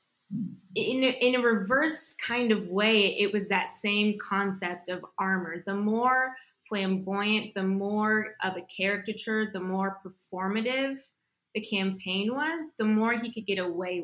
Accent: American